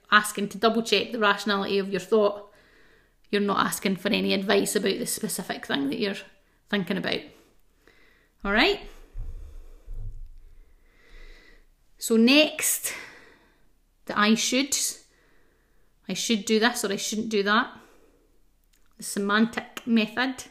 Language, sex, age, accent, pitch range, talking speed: English, female, 30-49, British, 200-240 Hz, 125 wpm